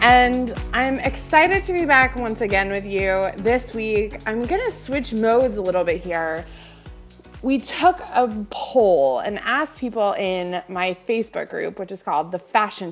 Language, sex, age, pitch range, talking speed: English, female, 20-39, 180-255 Hz, 170 wpm